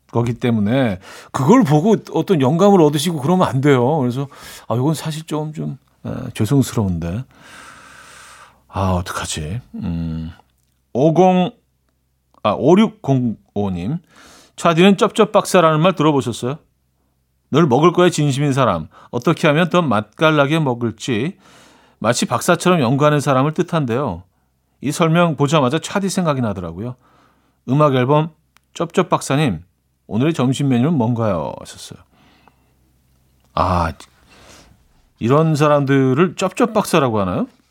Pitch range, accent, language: 105-170 Hz, native, Korean